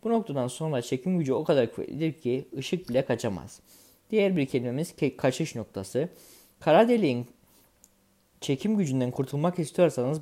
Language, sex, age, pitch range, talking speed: Turkish, male, 20-39, 125-160 Hz, 135 wpm